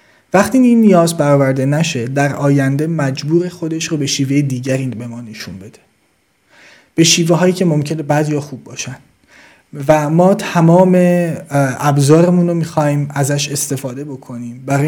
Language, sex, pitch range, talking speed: Persian, male, 140-180 Hz, 135 wpm